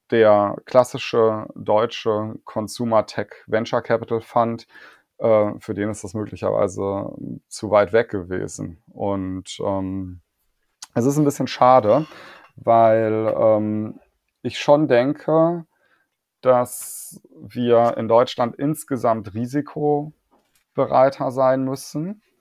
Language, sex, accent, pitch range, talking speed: German, male, German, 105-120 Hz, 90 wpm